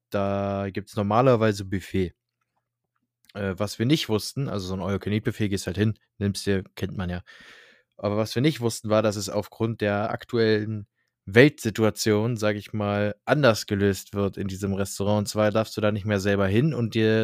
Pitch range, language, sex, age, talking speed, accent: 105-120 Hz, German, male, 20-39, 190 wpm, German